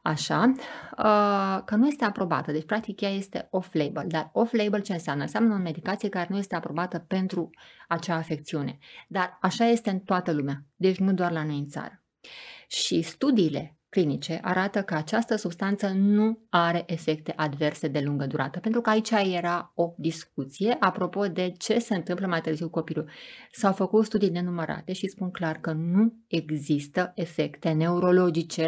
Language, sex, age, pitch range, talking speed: Romanian, female, 30-49, 155-195 Hz, 165 wpm